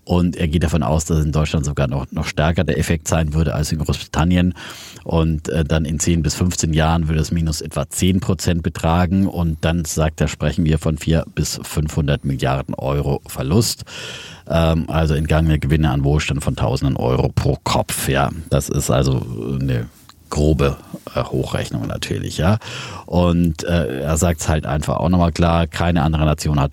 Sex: male